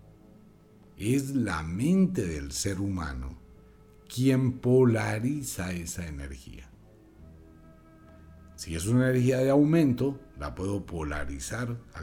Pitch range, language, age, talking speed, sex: 75-125 Hz, Spanish, 60-79, 100 wpm, male